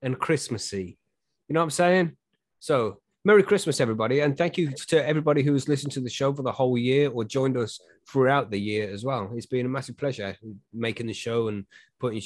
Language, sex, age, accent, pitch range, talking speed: English, male, 30-49, British, 110-150 Hz, 210 wpm